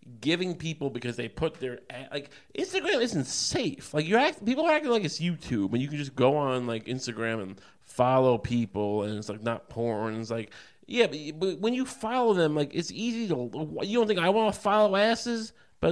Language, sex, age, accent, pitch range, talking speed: English, male, 30-49, American, 130-200 Hz, 205 wpm